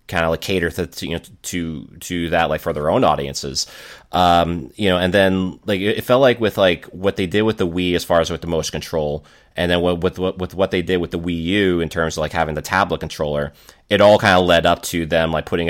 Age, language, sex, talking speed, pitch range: 30-49, English, male, 265 wpm, 80-95 Hz